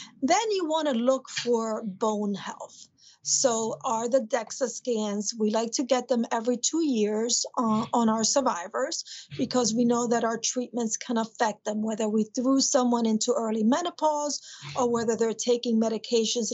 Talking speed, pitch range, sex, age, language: 165 wpm, 220-255 Hz, female, 40-59, English